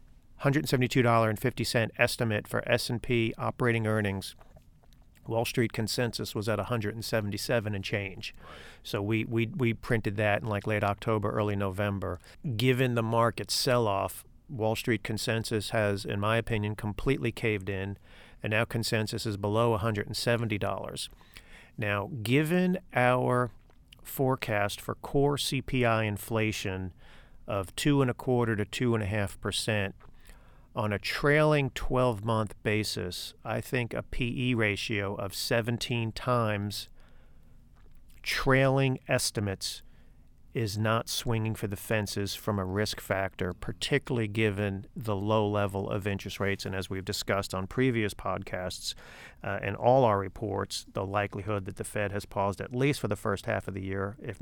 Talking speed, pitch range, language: 155 wpm, 100-120 Hz, English